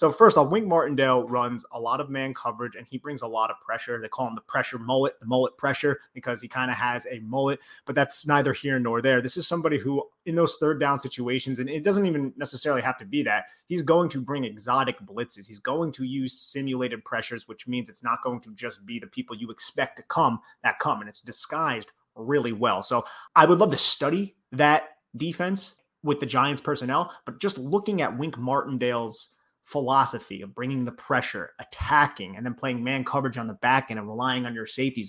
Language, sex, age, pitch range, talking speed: English, male, 30-49, 125-160 Hz, 220 wpm